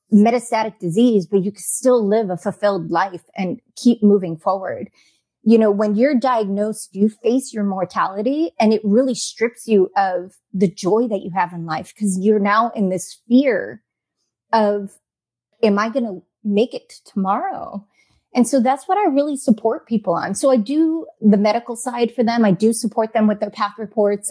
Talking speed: 185 wpm